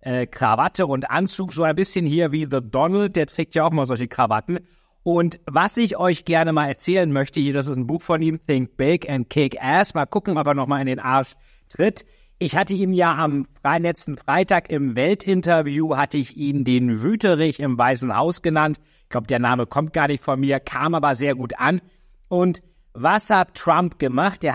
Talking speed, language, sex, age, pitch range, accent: 205 wpm, German, male, 60-79, 130-170 Hz, German